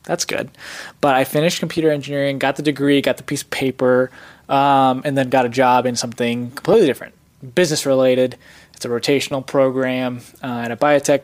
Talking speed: 180 wpm